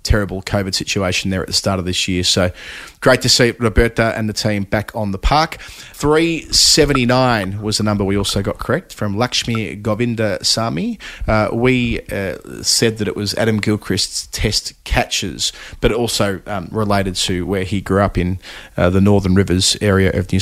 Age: 30-49